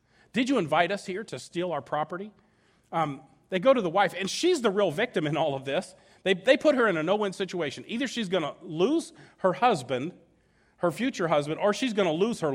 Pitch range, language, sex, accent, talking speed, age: 160-230 Hz, English, male, American, 230 wpm, 40-59